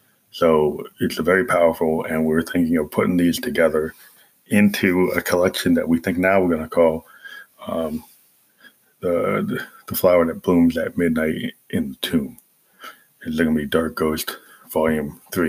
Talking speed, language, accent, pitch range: 165 wpm, English, American, 80-90 Hz